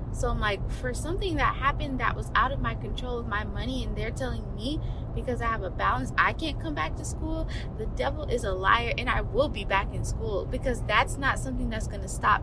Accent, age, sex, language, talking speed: American, 20-39, female, English, 245 wpm